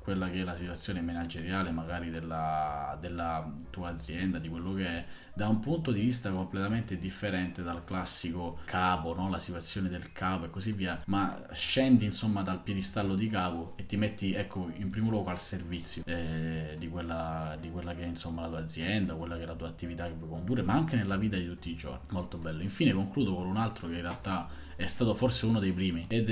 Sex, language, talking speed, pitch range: male, Italian, 215 wpm, 85-95 Hz